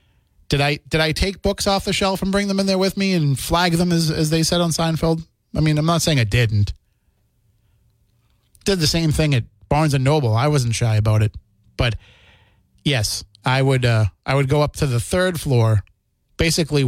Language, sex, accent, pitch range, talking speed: English, male, American, 115-160 Hz, 210 wpm